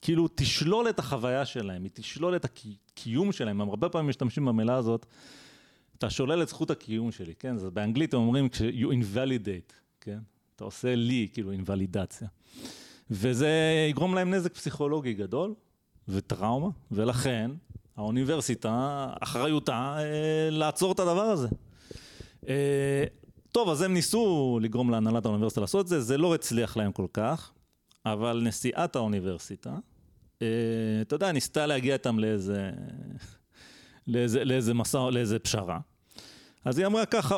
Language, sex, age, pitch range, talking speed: Hebrew, male, 30-49, 115-160 Hz, 140 wpm